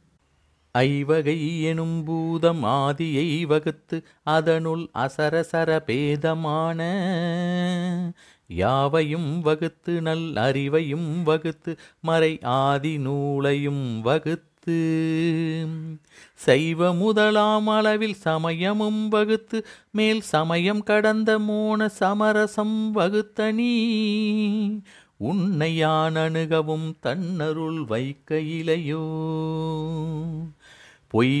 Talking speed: 65 wpm